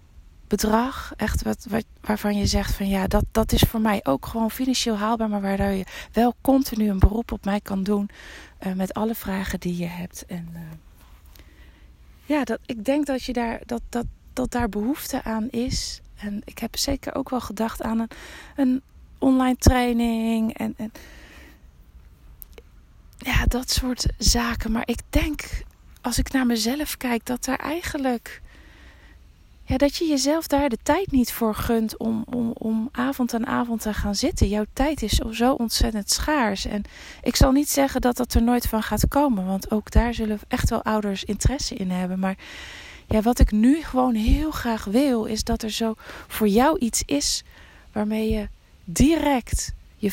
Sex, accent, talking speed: female, Dutch, 180 wpm